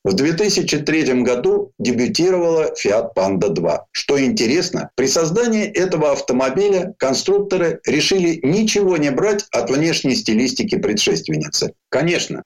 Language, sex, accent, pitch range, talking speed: Russian, male, native, 135-210 Hz, 110 wpm